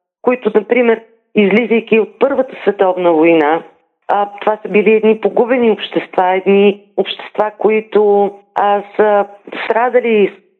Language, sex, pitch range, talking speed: Bulgarian, female, 200-235 Hz, 120 wpm